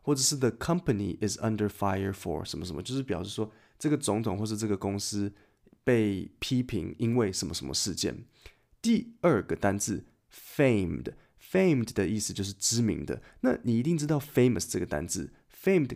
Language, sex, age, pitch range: Chinese, male, 20-39, 100-135 Hz